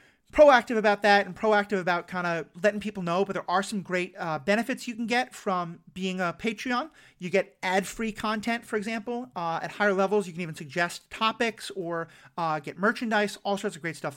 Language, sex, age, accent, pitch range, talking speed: English, male, 40-59, American, 185-245 Hz, 210 wpm